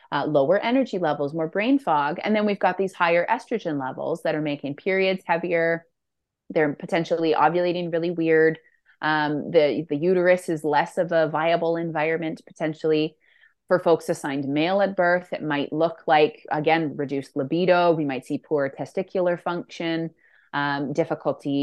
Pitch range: 160-200 Hz